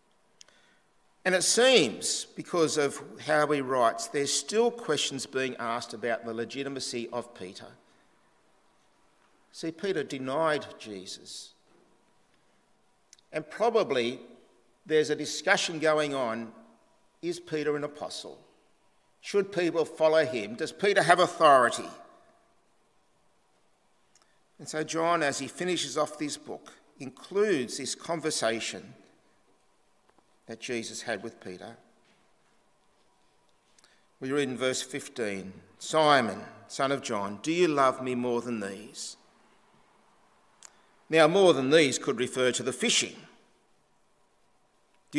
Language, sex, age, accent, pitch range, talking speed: English, male, 50-69, Australian, 120-165 Hz, 110 wpm